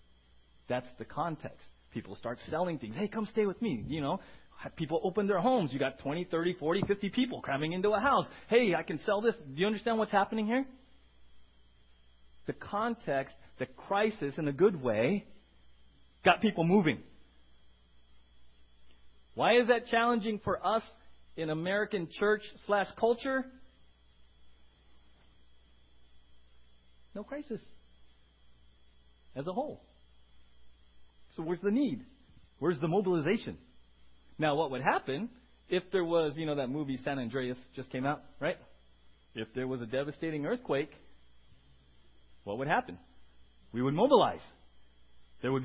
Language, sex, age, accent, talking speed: English, male, 40-59, American, 140 wpm